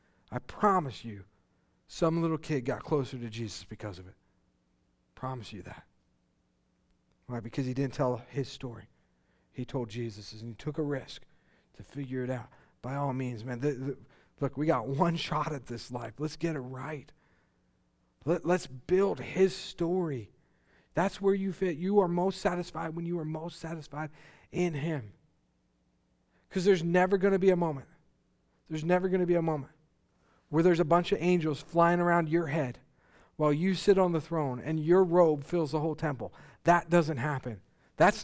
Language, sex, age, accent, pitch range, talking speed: English, male, 40-59, American, 115-170 Hz, 175 wpm